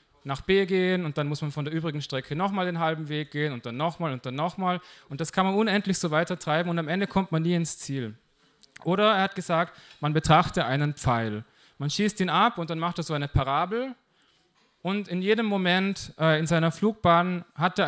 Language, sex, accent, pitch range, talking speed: German, male, German, 145-185 Hz, 225 wpm